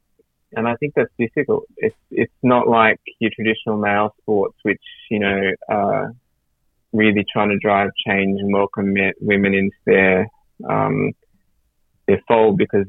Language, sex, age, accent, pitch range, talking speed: English, male, 20-39, Australian, 100-125 Hz, 155 wpm